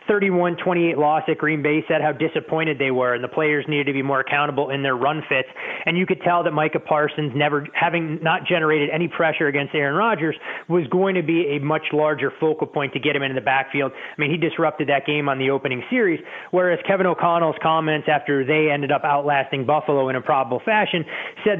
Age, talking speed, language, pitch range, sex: 30-49, 215 wpm, English, 140-165 Hz, male